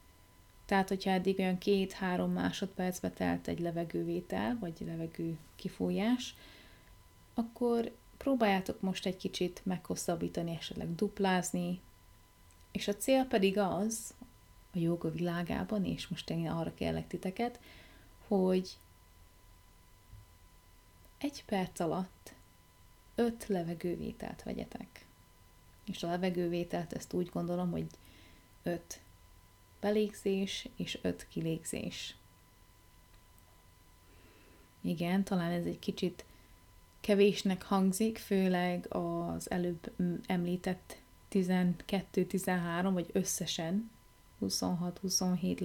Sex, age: female, 30-49